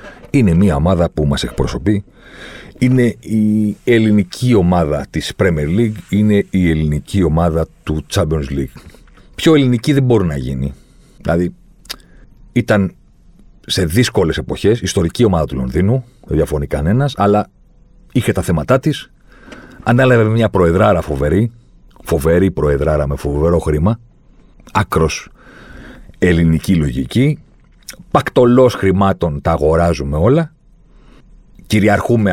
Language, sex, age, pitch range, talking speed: Greek, male, 50-69, 80-115 Hz, 115 wpm